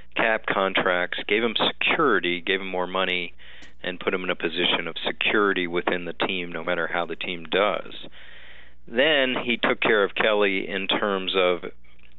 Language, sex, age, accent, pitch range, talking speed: English, male, 40-59, American, 90-105 Hz, 170 wpm